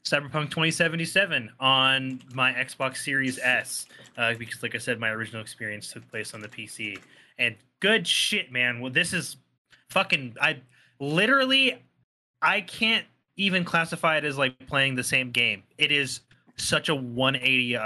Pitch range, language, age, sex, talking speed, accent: 125-170 Hz, English, 20-39, male, 155 wpm, American